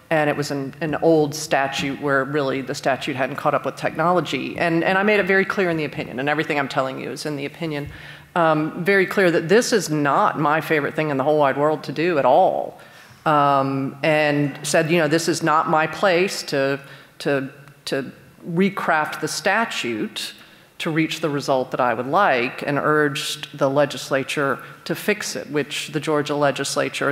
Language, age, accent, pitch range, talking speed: English, 40-59, American, 145-170 Hz, 195 wpm